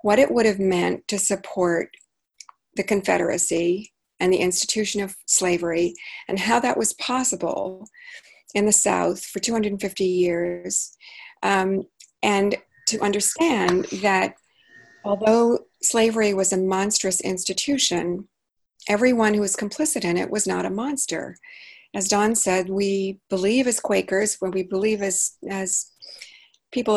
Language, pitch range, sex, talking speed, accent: English, 185-215 Hz, female, 130 wpm, American